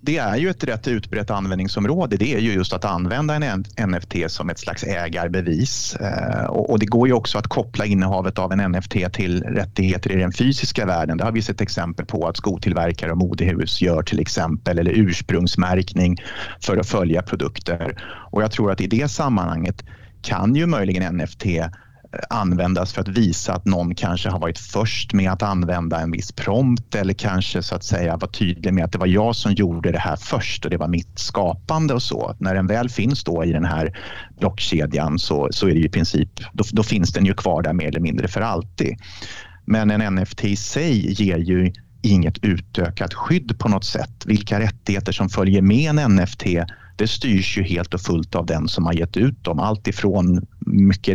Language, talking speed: Swedish, 200 wpm